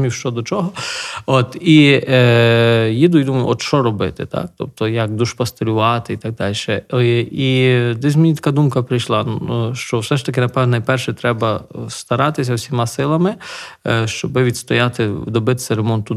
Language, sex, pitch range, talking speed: Ukrainian, male, 115-135 Hz, 155 wpm